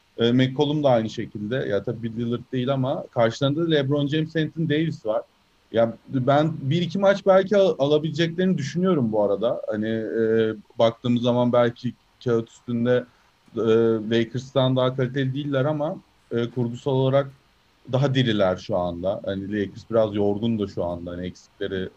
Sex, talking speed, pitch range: male, 155 wpm, 115-150 Hz